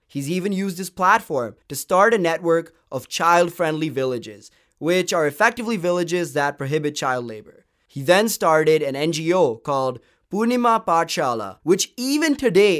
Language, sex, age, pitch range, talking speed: English, male, 20-39, 150-205 Hz, 145 wpm